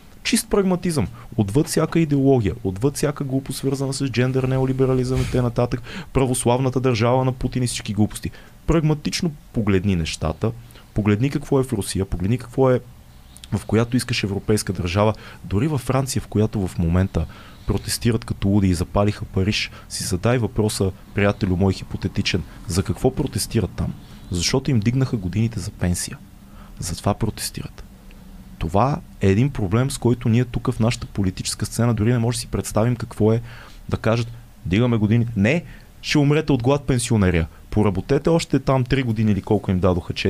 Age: 30-49